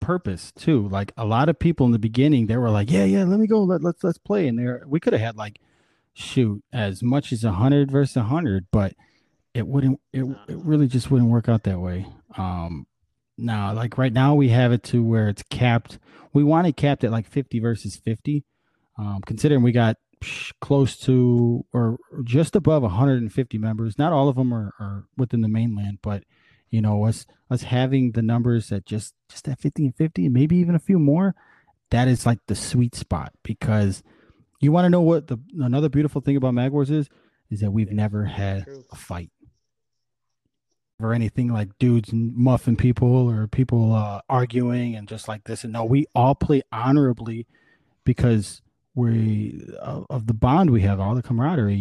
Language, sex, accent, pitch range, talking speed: English, male, American, 110-140 Hz, 190 wpm